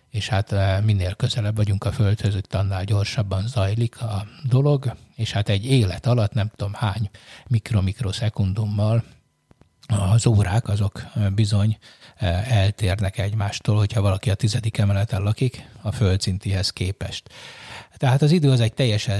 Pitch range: 105-120 Hz